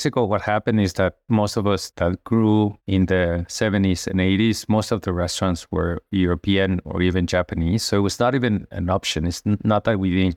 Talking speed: 205 wpm